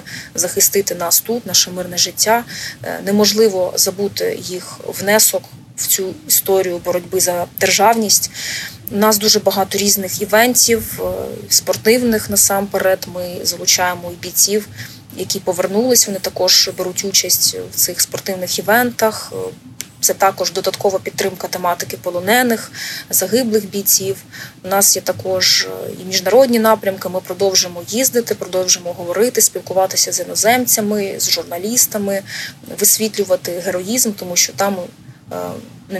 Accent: native